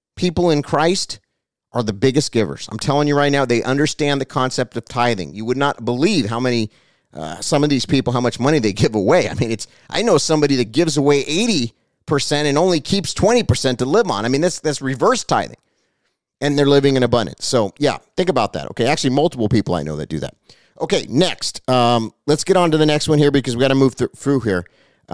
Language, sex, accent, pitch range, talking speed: English, male, American, 125-170 Hz, 230 wpm